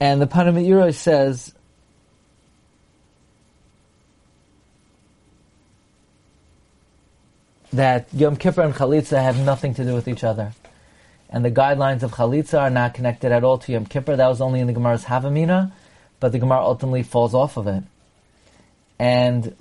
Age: 40-59